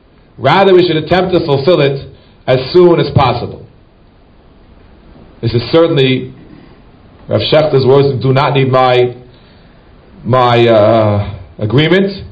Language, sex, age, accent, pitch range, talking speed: English, male, 50-69, American, 105-170 Hz, 120 wpm